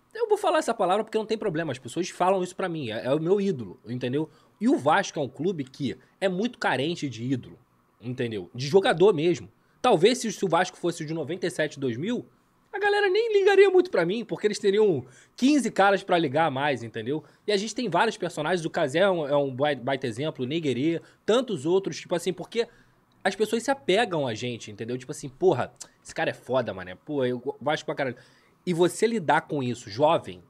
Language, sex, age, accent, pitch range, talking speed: Portuguese, male, 20-39, Brazilian, 130-180 Hz, 220 wpm